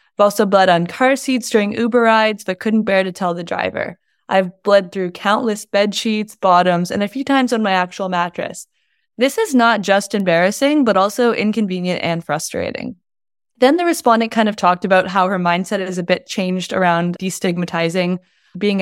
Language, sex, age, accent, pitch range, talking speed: English, female, 20-39, American, 180-225 Hz, 185 wpm